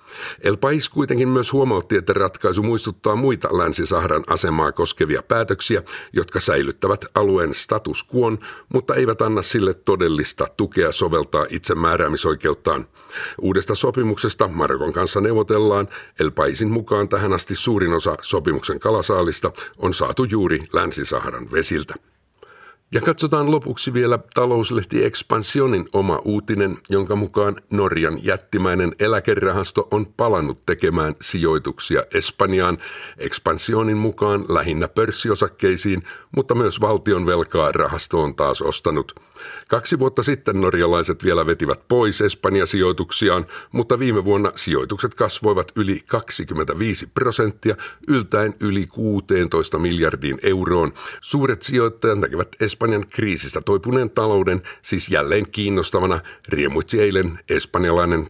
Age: 50-69